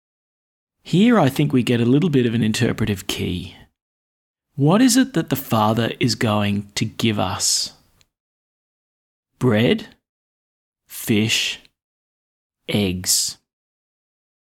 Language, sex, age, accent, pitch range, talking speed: English, male, 30-49, Australian, 110-160 Hz, 110 wpm